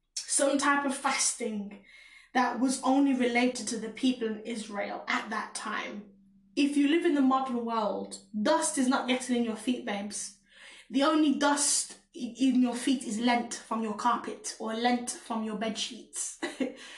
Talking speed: 170 wpm